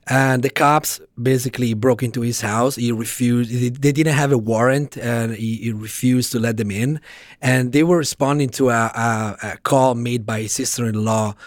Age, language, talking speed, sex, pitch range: 30-49, English, 185 wpm, male, 110-130 Hz